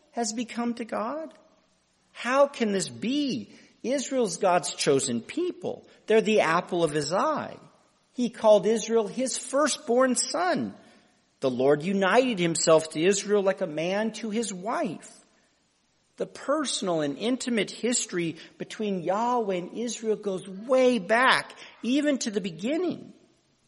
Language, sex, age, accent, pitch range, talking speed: English, male, 50-69, American, 175-255 Hz, 130 wpm